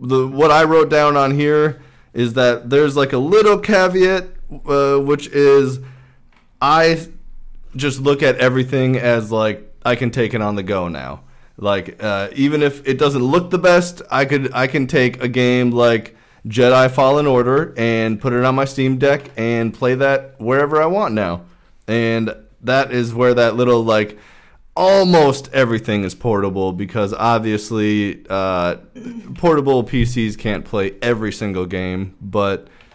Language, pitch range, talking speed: English, 110-135 Hz, 160 wpm